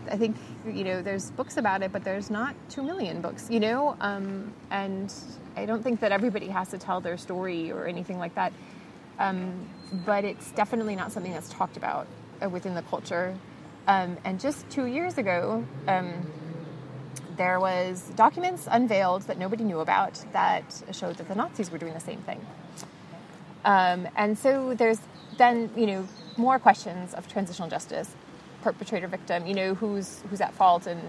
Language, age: English, 20-39